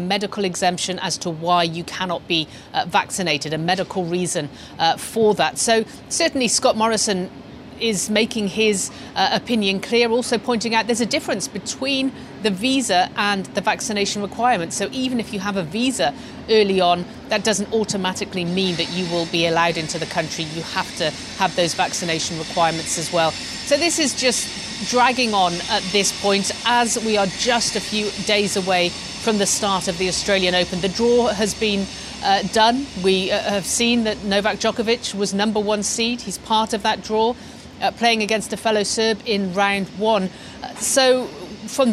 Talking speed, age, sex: 180 wpm, 40-59, female